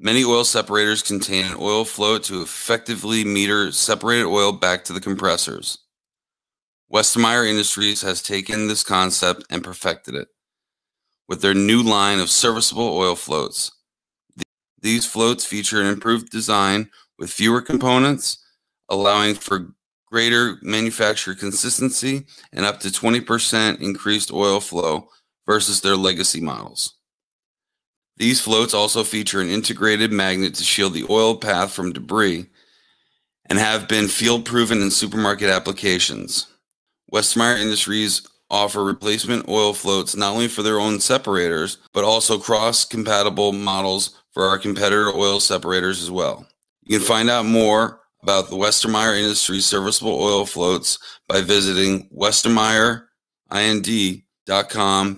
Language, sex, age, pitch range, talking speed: English, male, 30-49, 100-110 Hz, 125 wpm